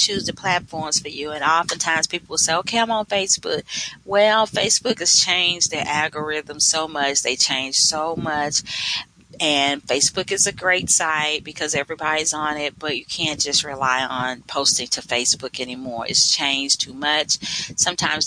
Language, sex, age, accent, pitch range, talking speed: English, female, 40-59, American, 145-180 Hz, 170 wpm